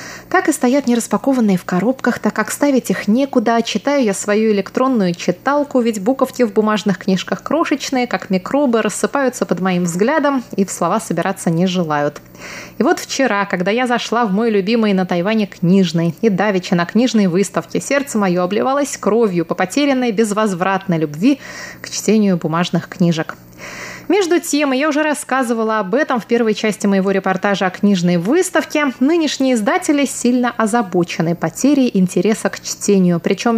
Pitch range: 195-260 Hz